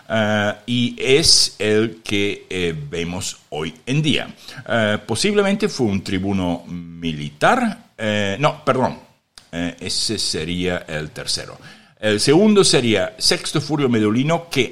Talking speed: 125 wpm